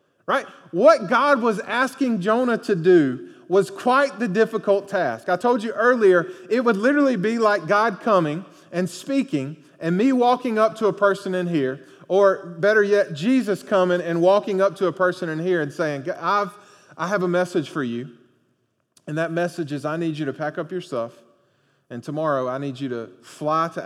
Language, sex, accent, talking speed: English, male, American, 195 wpm